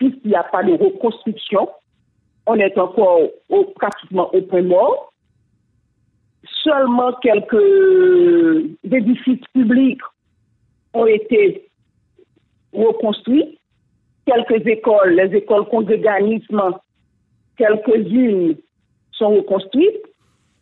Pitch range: 210-300 Hz